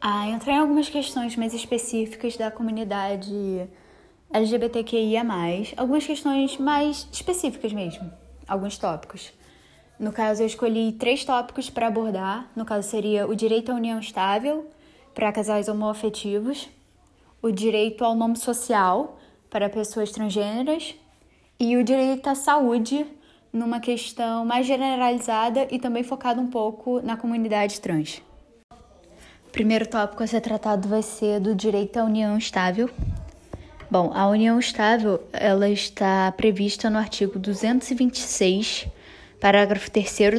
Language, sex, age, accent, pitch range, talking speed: Portuguese, female, 10-29, Brazilian, 210-245 Hz, 130 wpm